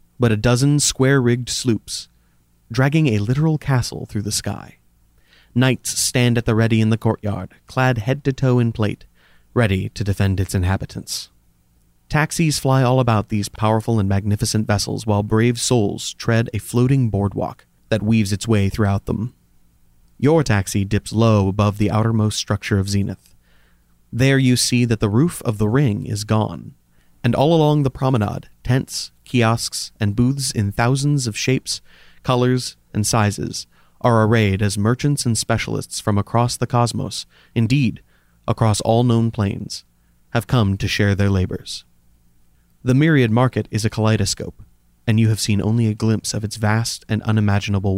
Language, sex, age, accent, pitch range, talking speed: English, male, 30-49, American, 100-125 Hz, 160 wpm